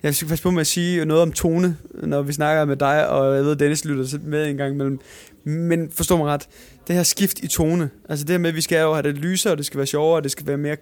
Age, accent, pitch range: 20-39, native, 140-170 Hz